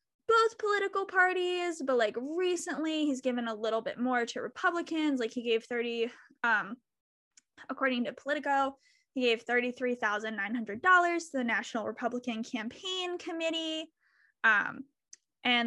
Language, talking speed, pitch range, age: English, 125 wpm, 235-290 Hz, 10-29